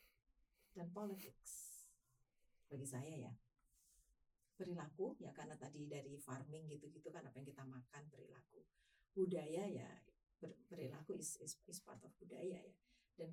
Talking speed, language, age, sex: 130 wpm, Indonesian, 40-59, female